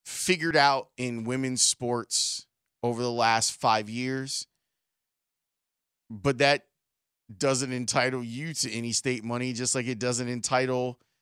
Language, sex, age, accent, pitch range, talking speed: English, male, 30-49, American, 120-150 Hz, 130 wpm